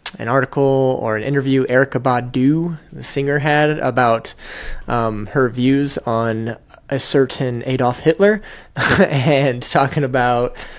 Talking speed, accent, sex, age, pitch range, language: 120 wpm, American, male, 20-39, 120-140 Hz, English